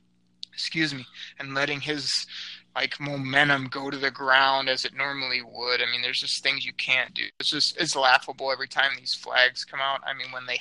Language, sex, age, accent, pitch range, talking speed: English, male, 20-39, American, 125-145 Hz, 210 wpm